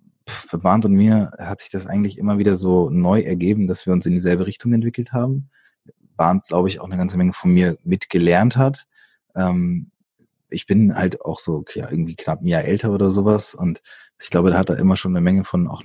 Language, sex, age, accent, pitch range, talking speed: German, male, 30-49, German, 90-120 Hz, 220 wpm